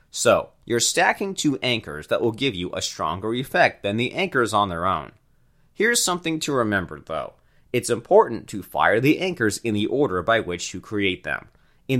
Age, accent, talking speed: 30-49, American, 190 wpm